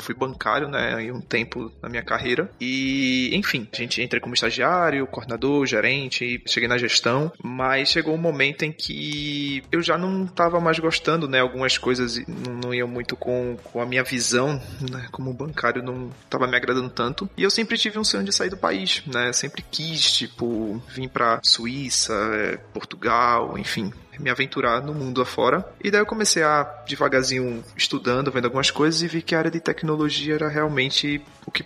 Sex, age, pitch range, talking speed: male, 20-39, 125-150 Hz, 190 wpm